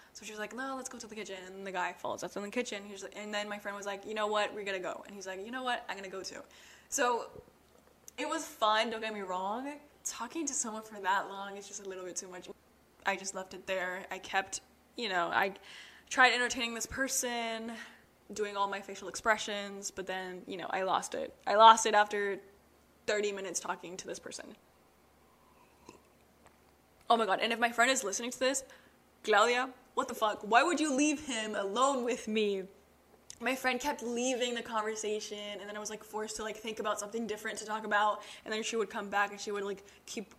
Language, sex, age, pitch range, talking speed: English, female, 10-29, 200-235 Hz, 230 wpm